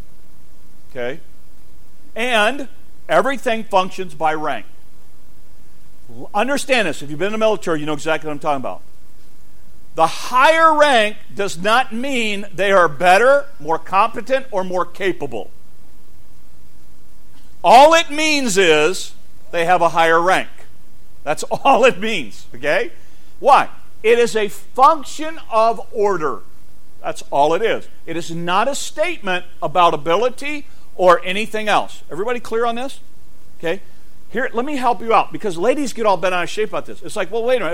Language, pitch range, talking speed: English, 155-235 Hz, 155 wpm